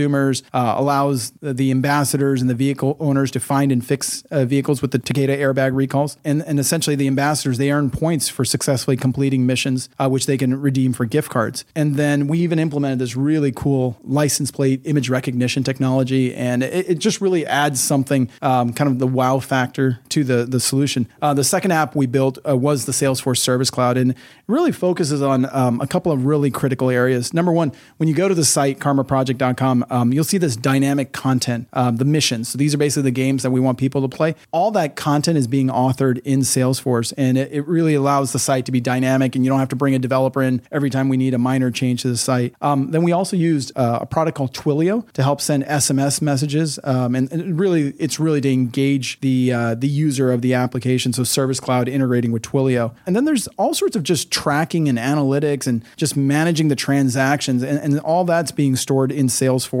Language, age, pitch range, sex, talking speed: English, 40-59, 130-145 Hz, male, 220 wpm